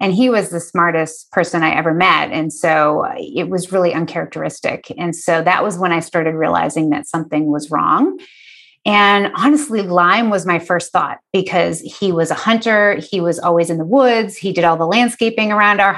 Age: 30-49